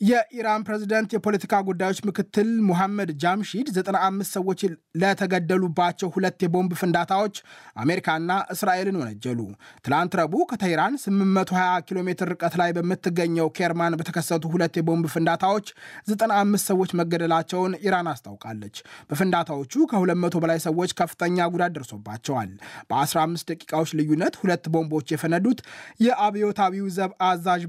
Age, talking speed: 20-39, 75 wpm